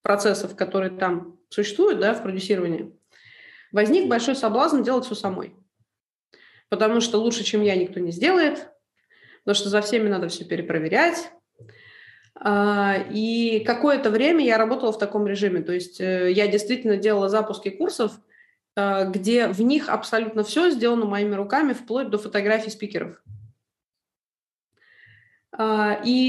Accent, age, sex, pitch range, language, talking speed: native, 20-39, female, 200-240 Hz, Russian, 125 wpm